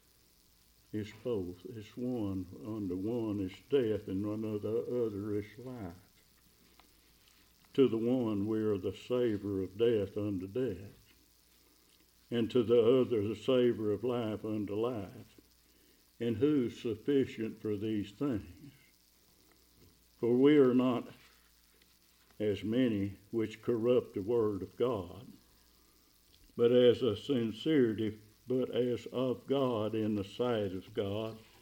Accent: American